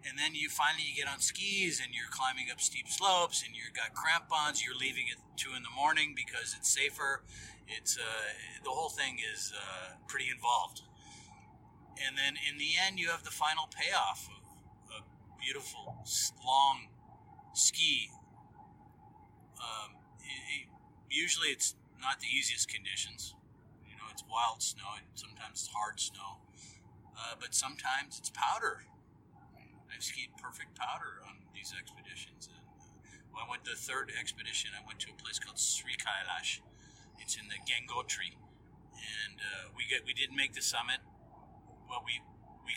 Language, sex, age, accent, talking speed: Hebrew, male, 40-59, American, 165 wpm